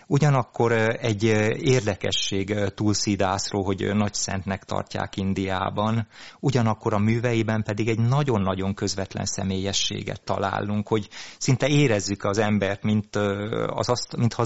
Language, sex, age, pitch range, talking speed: Hungarian, male, 30-49, 100-115 Hz, 100 wpm